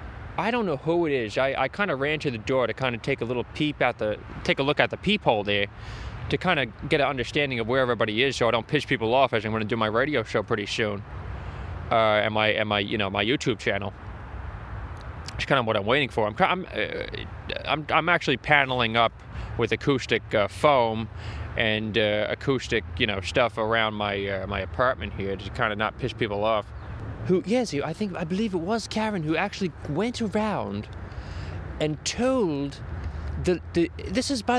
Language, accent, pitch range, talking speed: English, American, 105-170 Hz, 215 wpm